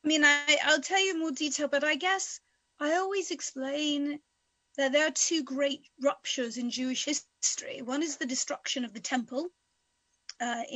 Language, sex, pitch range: English, female, 250-290 Hz